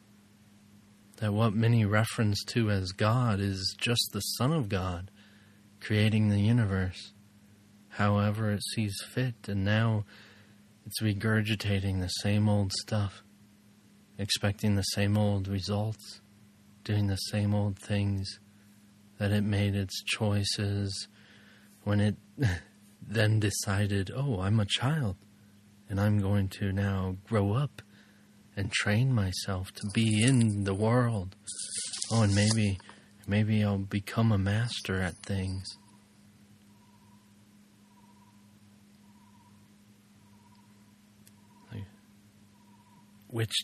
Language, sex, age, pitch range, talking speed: English, male, 30-49, 100-105 Hz, 105 wpm